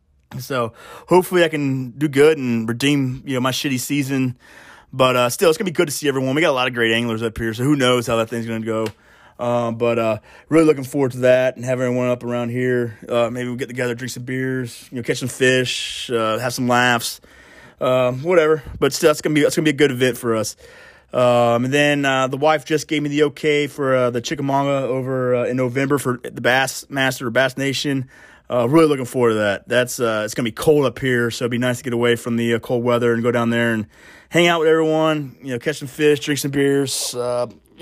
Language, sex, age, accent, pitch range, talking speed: English, male, 20-39, American, 120-145 Hz, 250 wpm